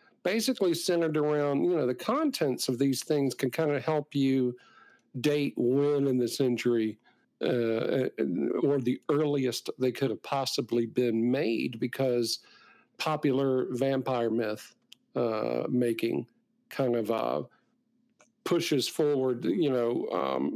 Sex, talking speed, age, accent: male, 130 wpm, 50-69, American